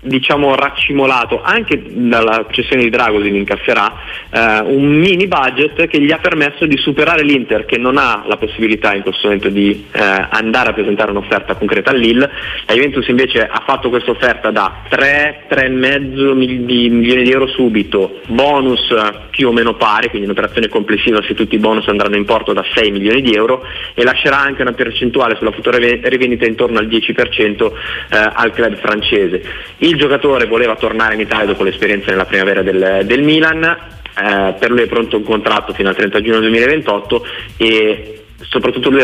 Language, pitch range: Italian, 100-130 Hz